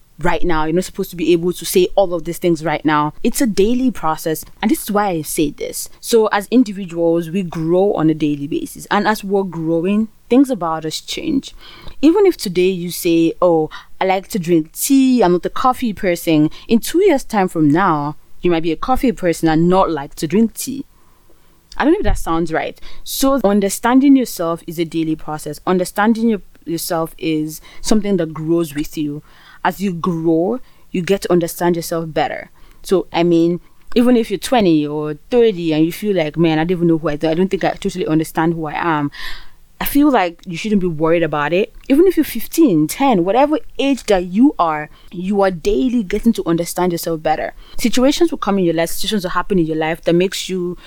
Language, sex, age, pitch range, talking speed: English, female, 20-39, 165-215 Hz, 215 wpm